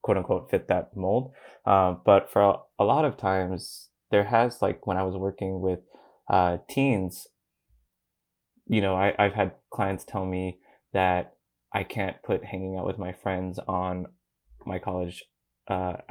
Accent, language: American, English